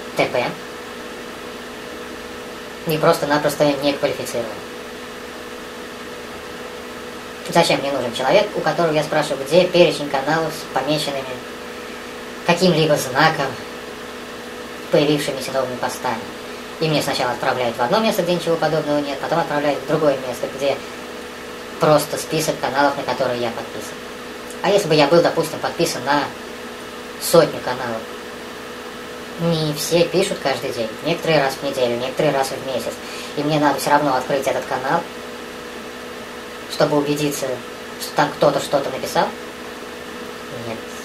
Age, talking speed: 20-39, 125 wpm